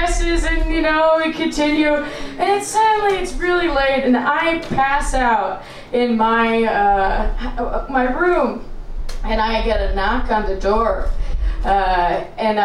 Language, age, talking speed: English, 20-39, 140 wpm